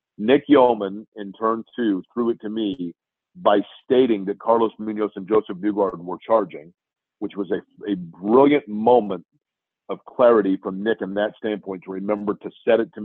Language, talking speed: English, 175 wpm